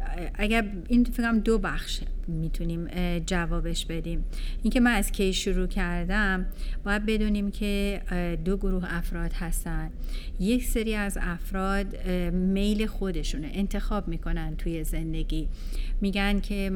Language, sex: Persian, female